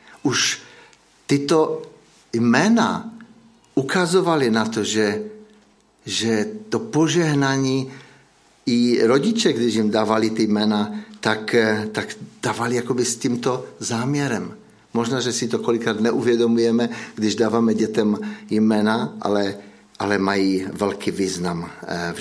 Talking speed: 110 wpm